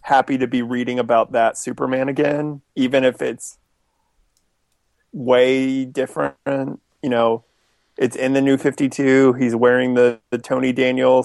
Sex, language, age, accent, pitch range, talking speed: male, English, 30-49, American, 120-140 Hz, 140 wpm